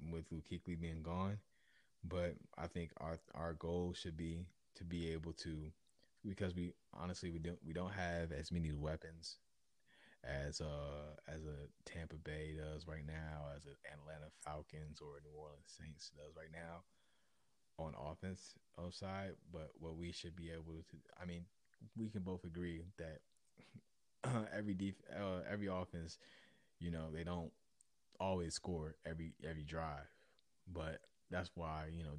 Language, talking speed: English, 155 wpm